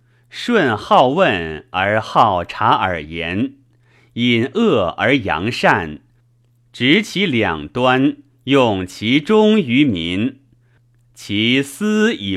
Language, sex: Chinese, male